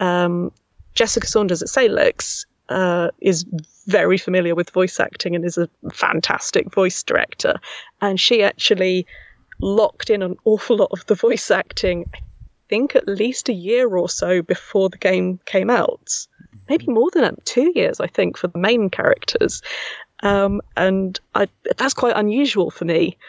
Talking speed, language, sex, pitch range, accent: 160 wpm, English, female, 180-225 Hz, British